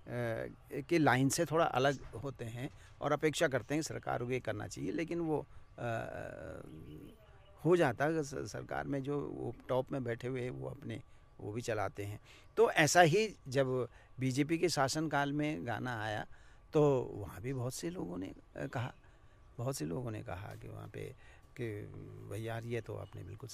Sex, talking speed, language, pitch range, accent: male, 180 wpm, Hindi, 115-145 Hz, native